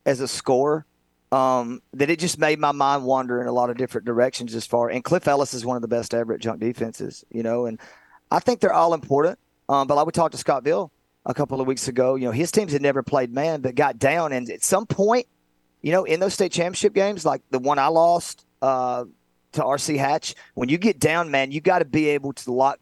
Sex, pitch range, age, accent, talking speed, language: male, 115-160 Hz, 30-49, American, 250 wpm, English